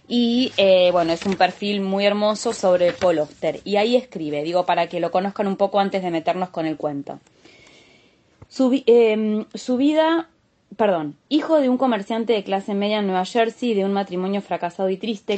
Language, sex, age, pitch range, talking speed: Spanish, female, 20-39, 175-215 Hz, 190 wpm